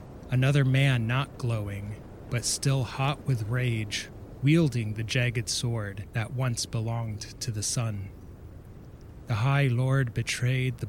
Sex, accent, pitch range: male, American, 105-130 Hz